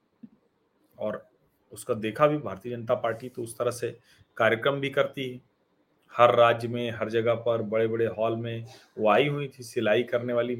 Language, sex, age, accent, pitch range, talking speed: Hindi, male, 40-59, native, 115-135 Hz, 175 wpm